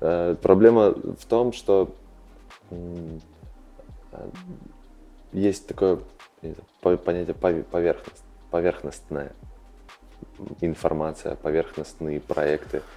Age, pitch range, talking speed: 20-39, 80-95 Hz, 50 wpm